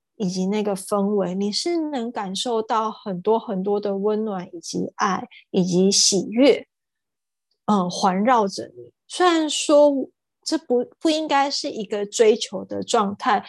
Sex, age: female, 20-39